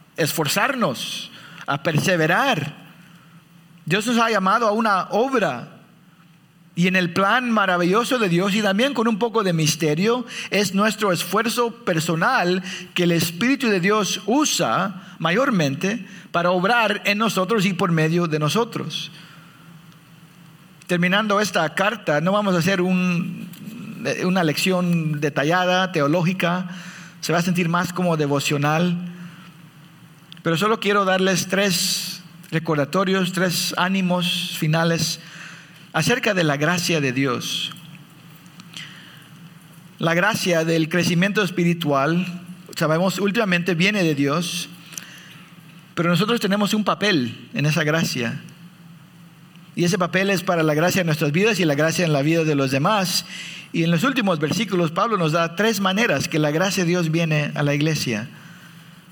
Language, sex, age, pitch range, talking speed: English, male, 50-69, 165-195 Hz, 135 wpm